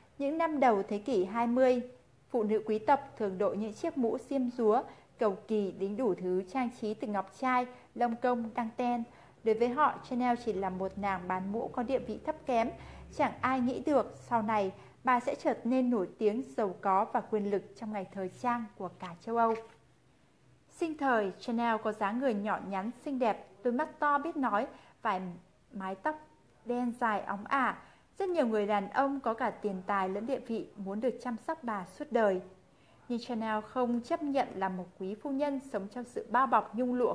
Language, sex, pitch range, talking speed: Vietnamese, female, 200-255 Hz, 210 wpm